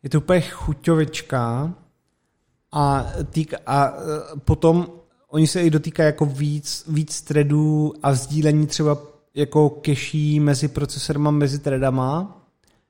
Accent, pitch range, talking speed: native, 135-155 Hz, 115 wpm